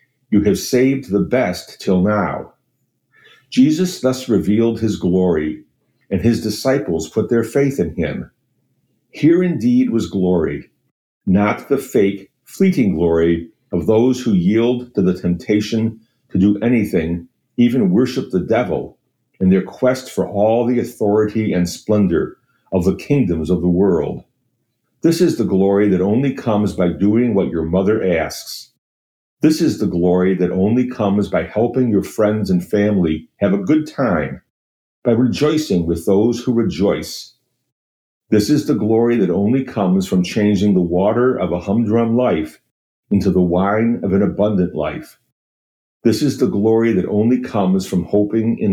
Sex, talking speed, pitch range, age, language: male, 155 wpm, 95-125 Hz, 50-69, English